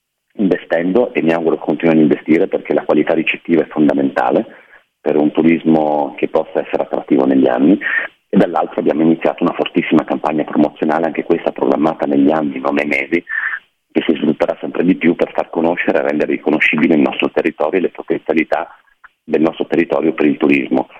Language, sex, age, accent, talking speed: Italian, male, 40-59, native, 175 wpm